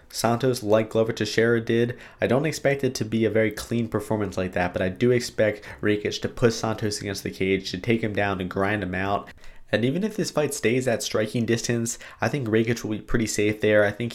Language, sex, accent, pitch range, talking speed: English, male, American, 100-115 Hz, 235 wpm